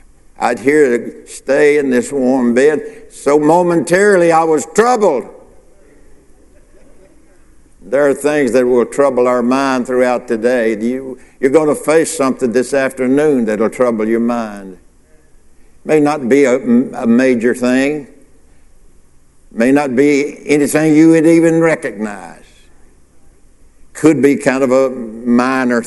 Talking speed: 130 wpm